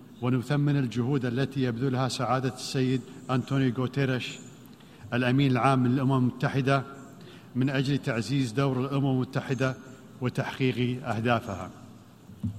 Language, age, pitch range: Arabic, 50-69, 125-150 Hz